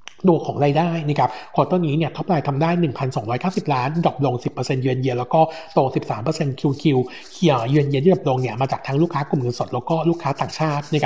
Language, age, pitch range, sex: Thai, 60-79, 130-165 Hz, male